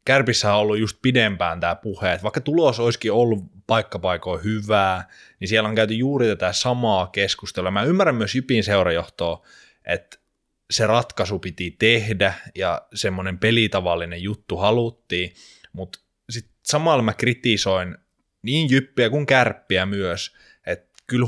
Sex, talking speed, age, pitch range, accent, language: male, 140 wpm, 20-39, 95-120 Hz, native, Finnish